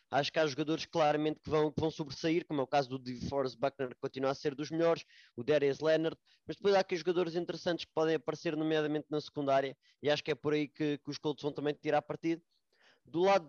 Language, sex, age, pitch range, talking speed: English, male, 20-39, 145-175 Hz, 240 wpm